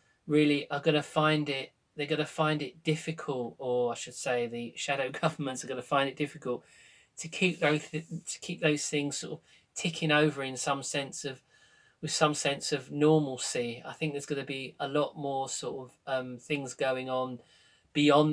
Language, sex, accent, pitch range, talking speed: English, male, British, 125-150 Hz, 205 wpm